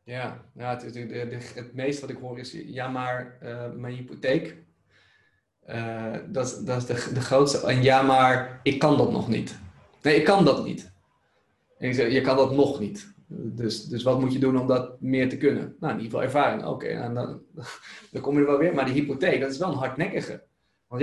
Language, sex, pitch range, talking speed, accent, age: Dutch, male, 130-175 Hz, 225 wpm, Dutch, 20-39